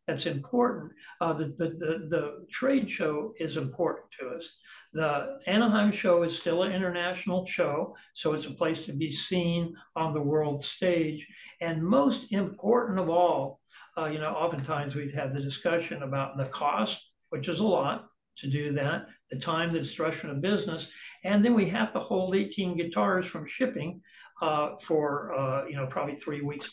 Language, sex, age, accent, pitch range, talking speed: English, male, 60-79, American, 150-190 Hz, 175 wpm